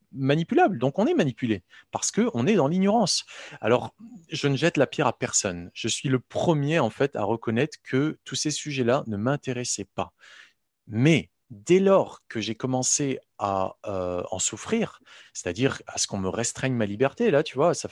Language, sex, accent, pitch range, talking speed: French, male, French, 115-180 Hz, 190 wpm